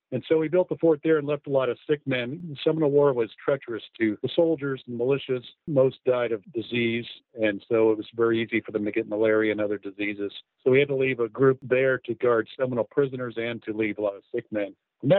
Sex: male